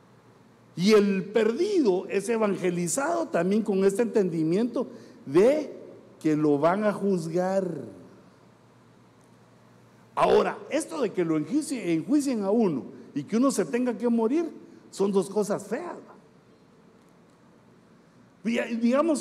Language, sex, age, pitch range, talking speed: Spanish, male, 60-79, 185-280 Hz, 115 wpm